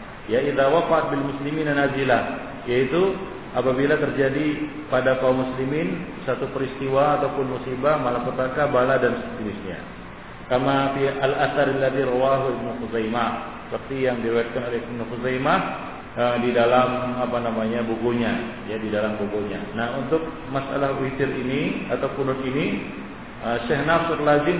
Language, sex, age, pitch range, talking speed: Malay, male, 50-69, 125-165 Hz, 115 wpm